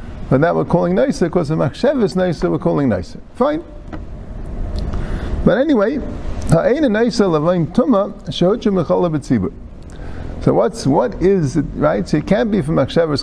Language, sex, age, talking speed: English, male, 50-69, 150 wpm